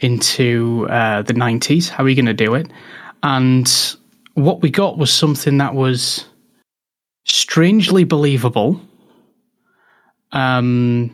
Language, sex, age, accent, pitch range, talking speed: English, male, 20-39, British, 125-145 Hz, 120 wpm